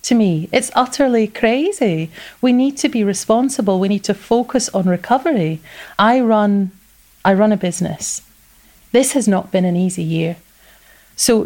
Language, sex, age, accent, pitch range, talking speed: English, female, 30-49, British, 195-250 Hz, 155 wpm